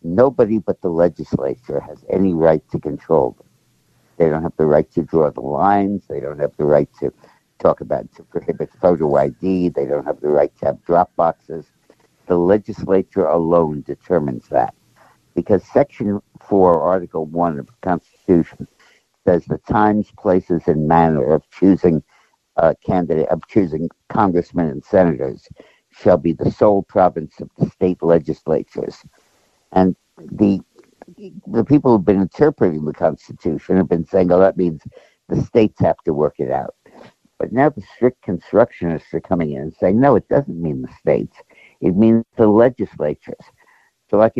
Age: 60-79